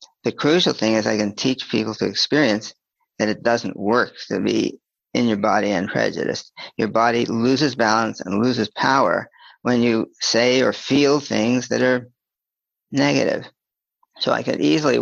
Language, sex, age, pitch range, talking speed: English, male, 50-69, 110-135 Hz, 165 wpm